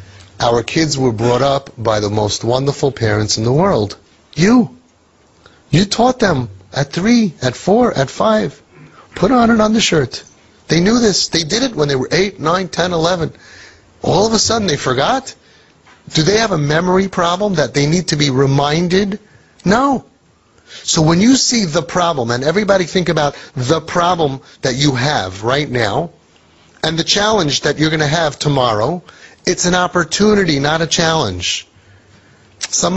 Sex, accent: male, American